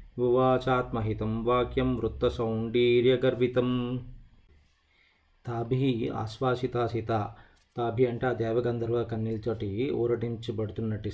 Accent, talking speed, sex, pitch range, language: native, 70 wpm, male, 110-125 Hz, Telugu